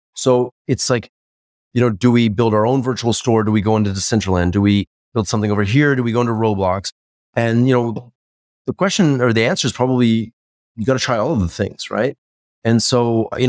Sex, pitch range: male, 95-120 Hz